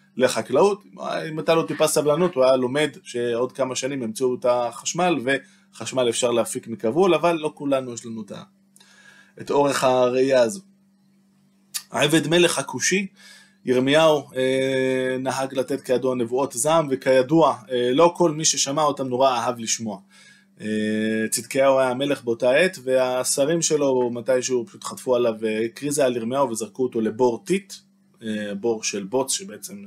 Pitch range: 120-175 Hz